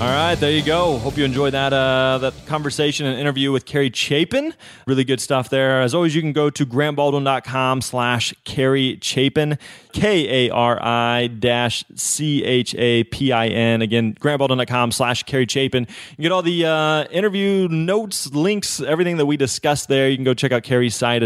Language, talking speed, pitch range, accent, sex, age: English, 165 wpm, 120-155 Hz, American, male, 20-39